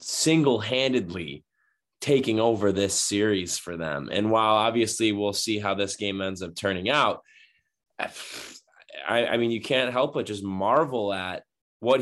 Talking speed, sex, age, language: 150 wpm, male, 20-39, English